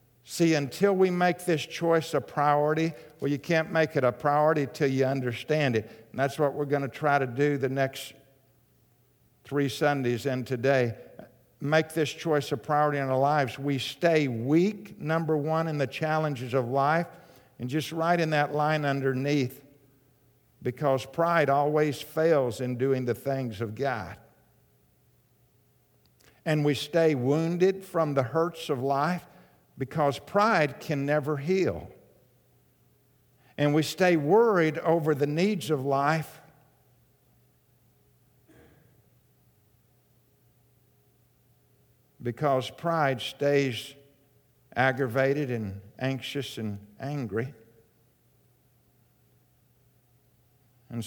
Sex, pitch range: male, 125-155 Hz